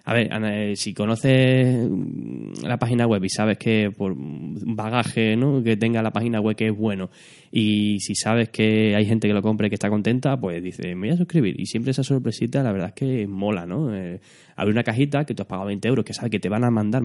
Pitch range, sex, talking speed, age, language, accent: 105-130 Hz, male, 245 wpm, 10-29, Spanish, Spanish